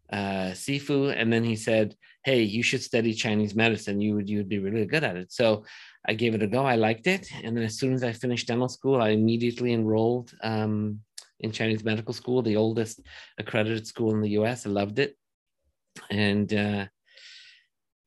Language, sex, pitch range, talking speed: English, male, 105-145 Hz, 195 wpm